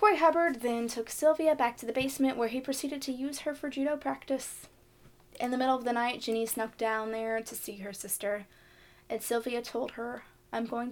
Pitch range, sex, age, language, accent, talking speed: 220-260 Hz, female, 20-39, English, American, 210 wpm